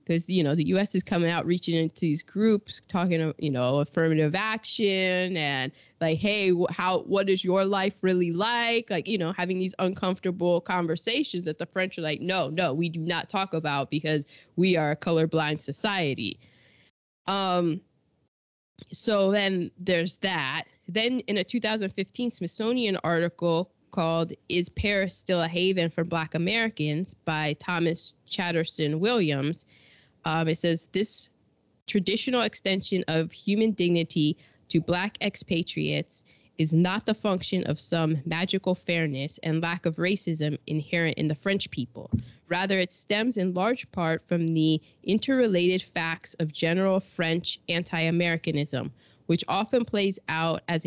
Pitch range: 160-195 Hz